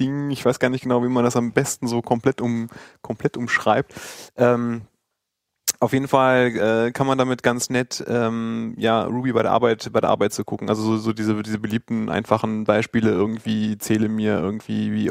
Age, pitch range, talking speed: 20-39, 110-120 Hz, 185 wpm